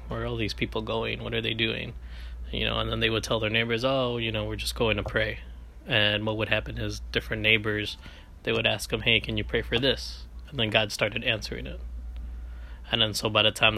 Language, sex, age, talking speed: English, male, 20-39, 245 wpm